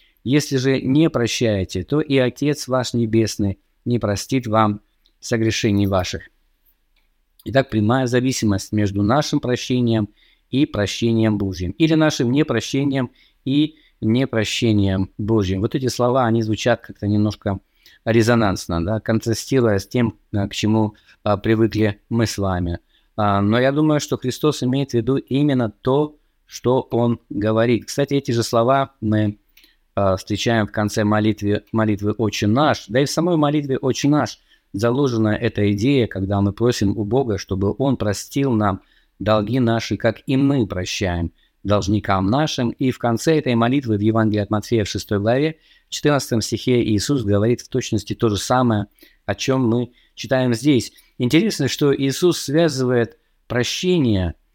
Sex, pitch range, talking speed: male, 105-130 Hz, 140 wpm